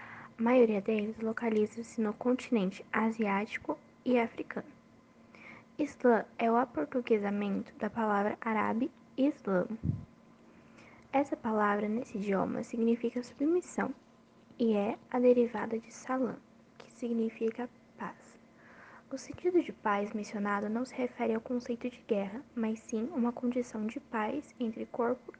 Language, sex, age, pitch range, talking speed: Portuguese, female, 10-29, 220-250 Hz, 125 wpm